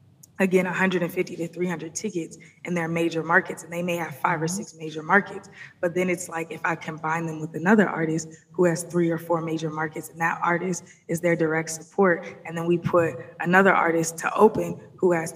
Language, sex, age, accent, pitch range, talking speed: English, female, 20-39, American, 165-180 Hz, 205 wpm